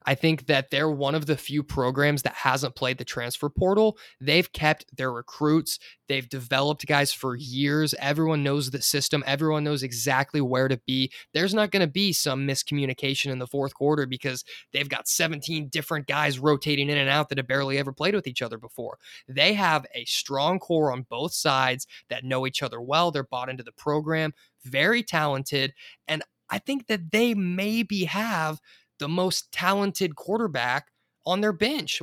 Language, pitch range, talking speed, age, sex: English, 135-165 Hz, 185 wpm, 20-39, male